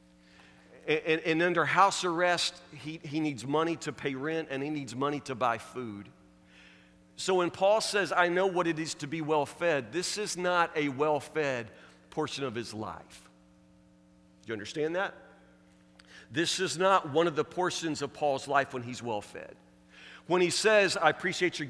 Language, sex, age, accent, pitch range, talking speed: English, male, 50-69, American, 105-175 Hz, 175 wpm